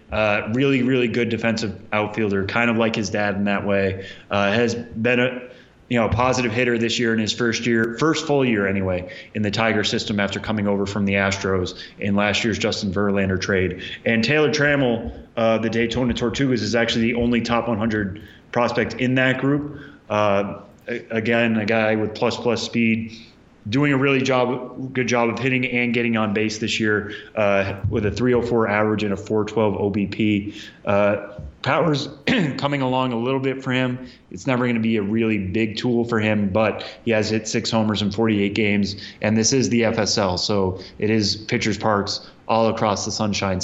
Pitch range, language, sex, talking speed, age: 105-120 Hz, English, male, 195 wpm, 20-39